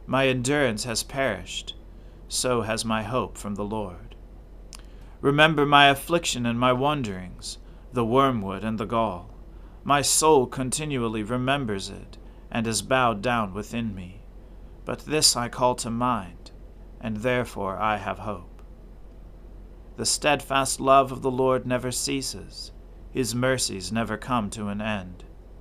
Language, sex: English, male